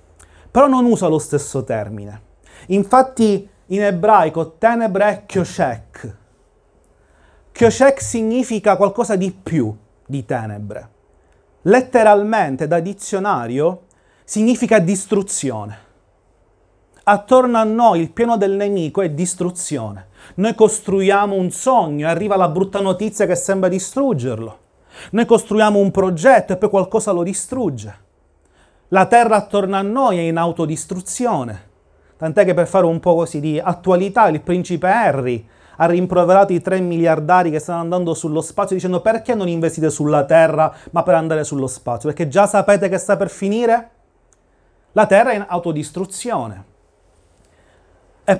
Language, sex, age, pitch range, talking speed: Italian, male, 30-49, 145-205 Hz, 135 wpm